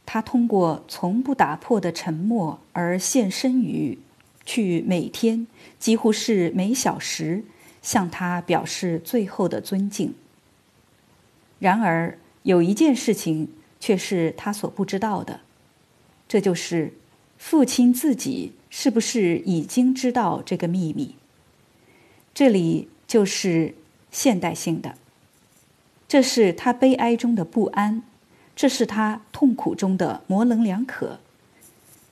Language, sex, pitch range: Chinese, female, 175-240 Hz